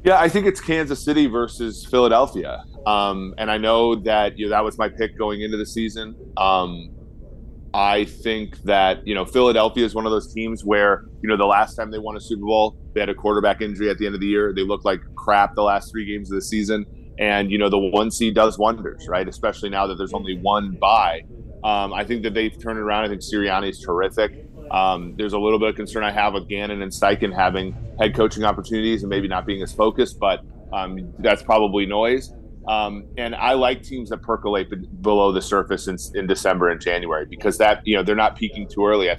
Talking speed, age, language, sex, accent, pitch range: 230 wpm, 30-49, English, male, American, 100-110 Hz